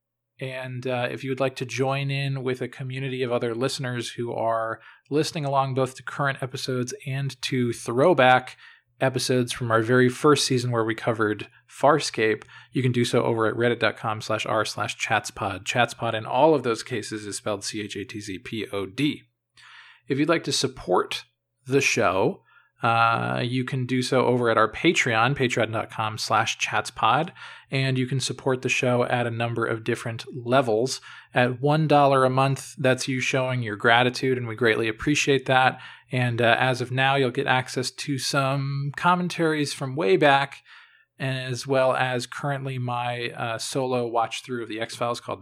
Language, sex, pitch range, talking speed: English, male, 115-135 Hz, 170 wpm